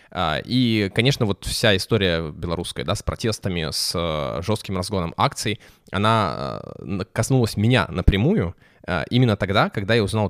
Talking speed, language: 130 wpm, Russian